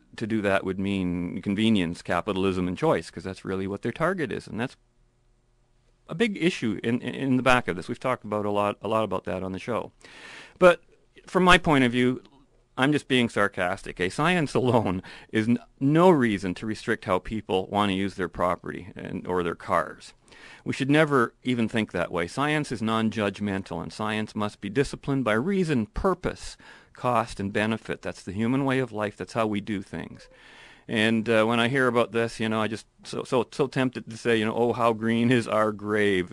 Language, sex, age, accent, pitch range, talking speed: English, male, 40-59, American, 95-125 Hz, 210 wpm